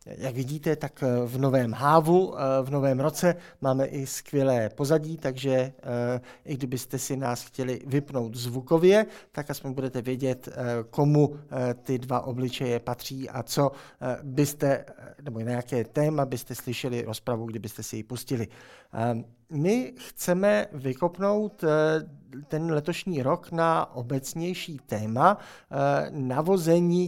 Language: Czech